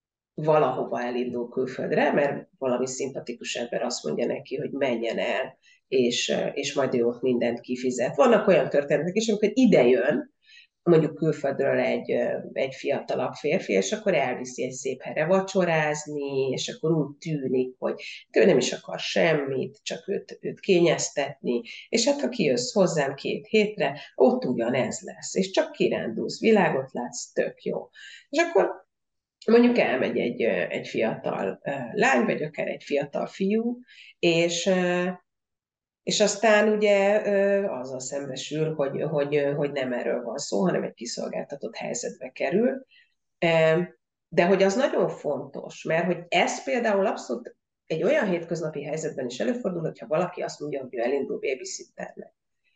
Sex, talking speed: female, 140 wpm